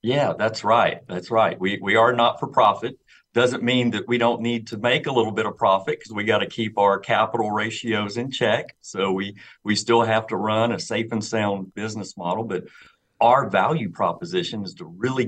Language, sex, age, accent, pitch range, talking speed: English, male, 50-69, American, 100-125 Hz, 210 wpm